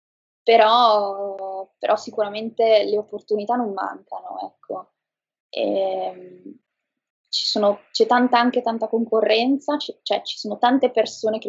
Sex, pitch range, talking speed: female, 205-225 Hz, 120 wpm